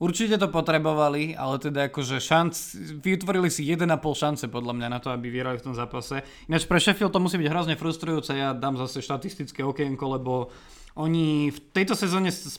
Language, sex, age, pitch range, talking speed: Slovak, male, 20-39, 130-160 Hz, 185 wpm